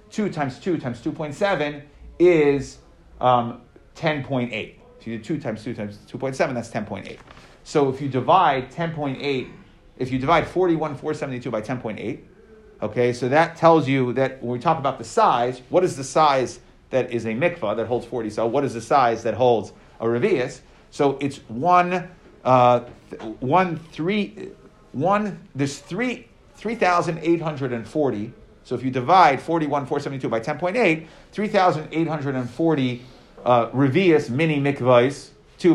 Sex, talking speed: male, 140 wpm